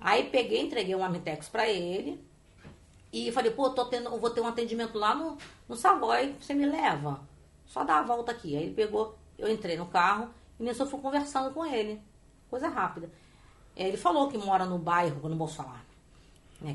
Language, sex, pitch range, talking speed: Portuguese, female, 155-215 Hz, 200 wpm